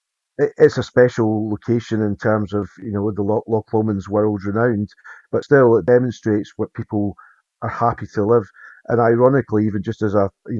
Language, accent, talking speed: English, British, 170 wpm